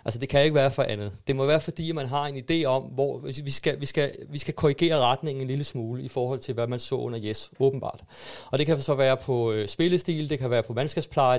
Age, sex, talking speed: 30-49, male, 260 wpm